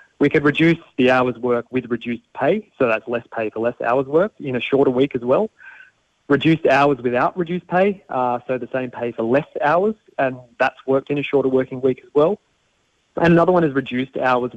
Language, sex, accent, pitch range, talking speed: English, male, Australian, 120-150 Hz, 215 wpm